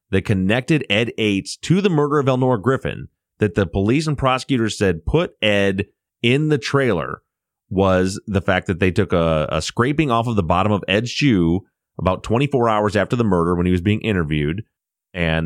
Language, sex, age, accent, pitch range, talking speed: English, male, 30-49, American, 85-115 Hz, 190 wpm